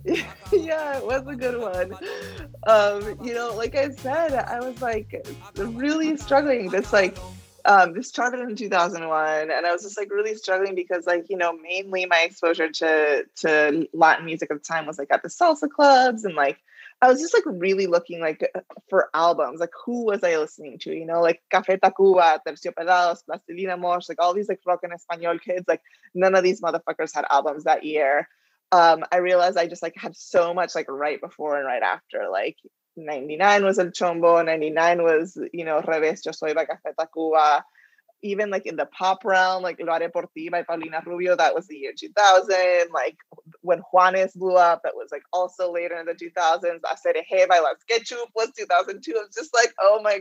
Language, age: English, 20-39